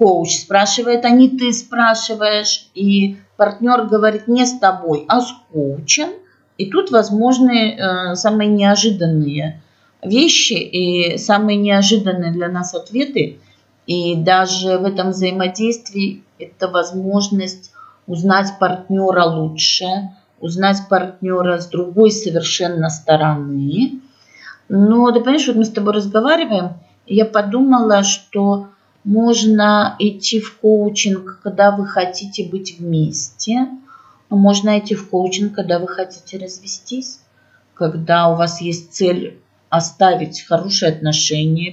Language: Russian